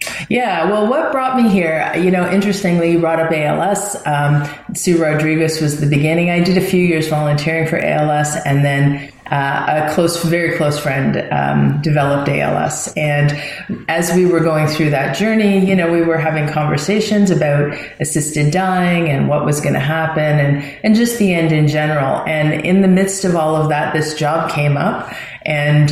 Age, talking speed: 30-49, 190 wpm